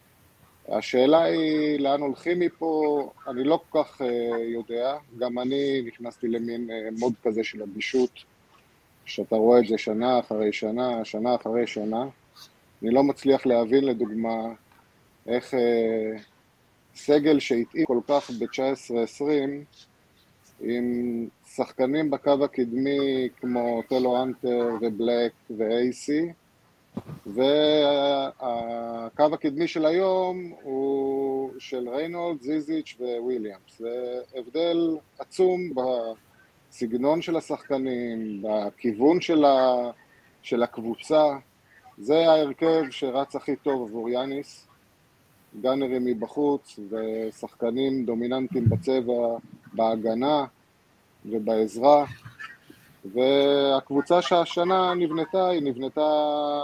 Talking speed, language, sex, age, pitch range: 95 wpm, Hebrew, male, 30-49, 115-145 Hz